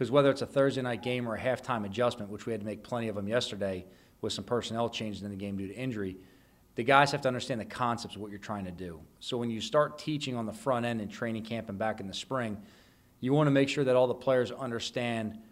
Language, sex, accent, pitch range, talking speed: English, male, American, 110-125 Hz, 270 wpm